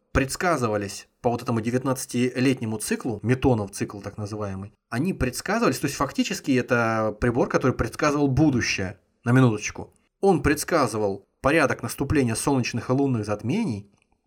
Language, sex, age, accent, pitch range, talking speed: Russian, male, 20-39, native, 105-140 Hz, 125 wpm